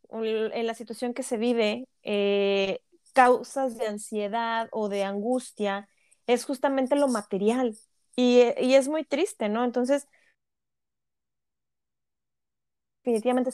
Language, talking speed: Spanish, 110 wpm